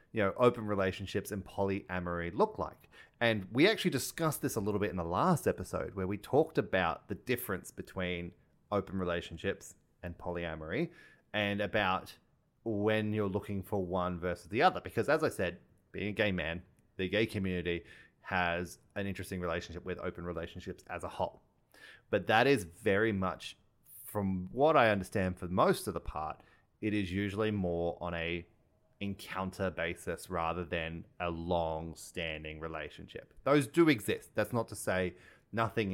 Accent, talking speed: Australian, 160 wpm